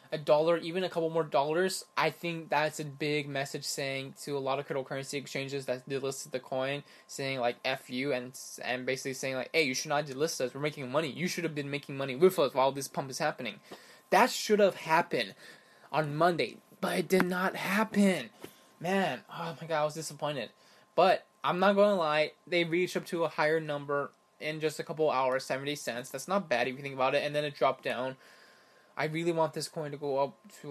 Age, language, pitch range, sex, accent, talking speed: 20-39, English, 135-170 Hz, male, American, 225 wpm